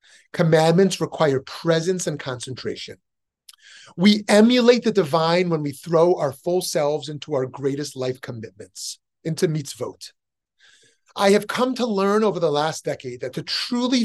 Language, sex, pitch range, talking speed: English, male, 140-195 Hz, 145 wpm